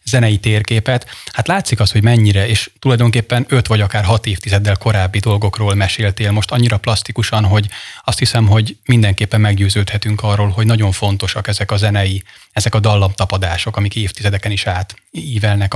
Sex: male